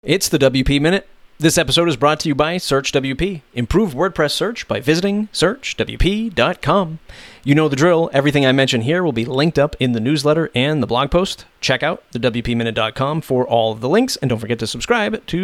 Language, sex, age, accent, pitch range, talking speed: English, male, 30-49, American, 125-175 Hz, 205 wpm